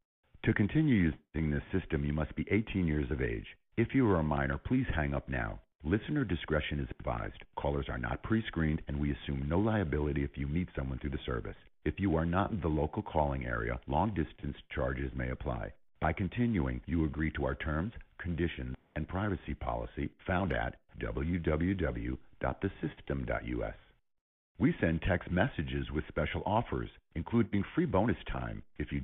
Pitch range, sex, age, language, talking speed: 70-100 Hz, male, 50-69, English, 165 wpm